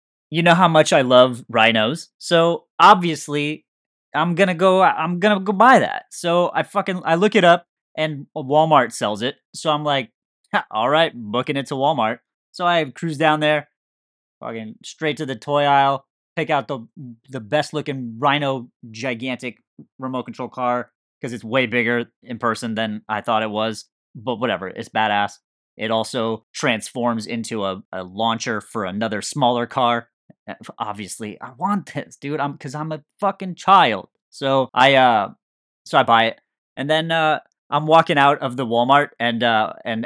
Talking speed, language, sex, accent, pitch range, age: 175 wpm, English, male, American, 110-155 Hz, 30-49